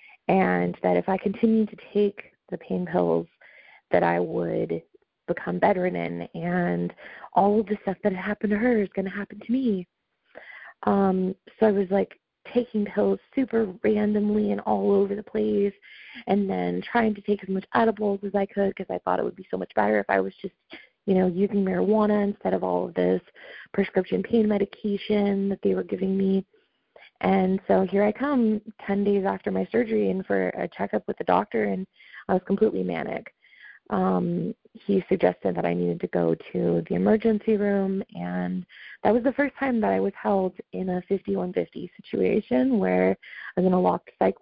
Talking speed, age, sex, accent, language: 190 wpm, 30-49, female, American, English